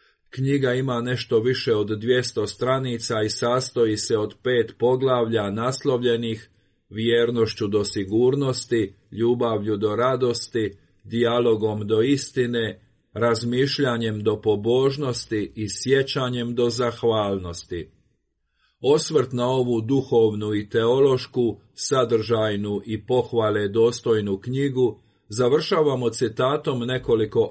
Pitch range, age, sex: 110-125 Hz, 40-59, male